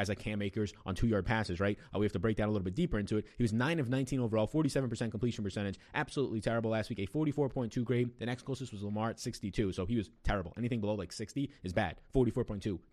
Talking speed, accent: 260 wpm, American